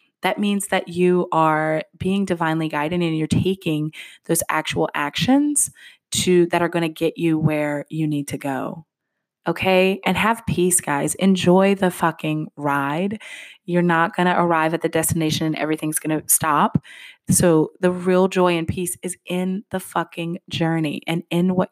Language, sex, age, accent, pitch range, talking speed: English, female, 20-39, American, 155-180 Hz, 170 wpm